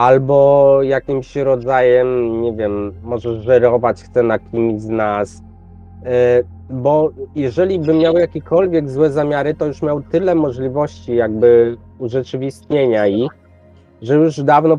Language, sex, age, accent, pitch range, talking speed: Polish, male, 20-39, native, 125-155 Hz, 120 wpm